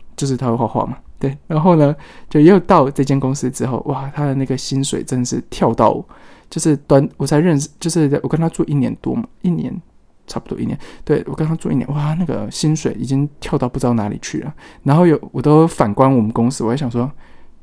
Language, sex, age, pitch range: Chinese, male, 20-39, 125-165 Hz